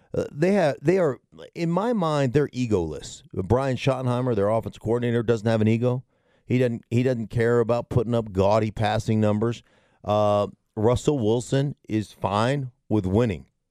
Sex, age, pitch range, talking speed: male, 40-59, 110-150 Hz, 160 wpm